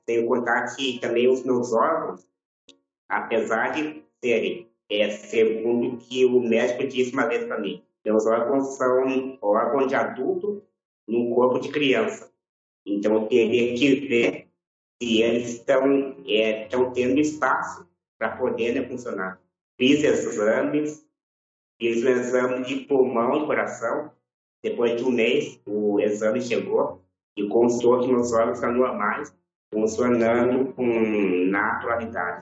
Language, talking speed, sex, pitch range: Portuguese, 130 wpm, male, 110-130 Hz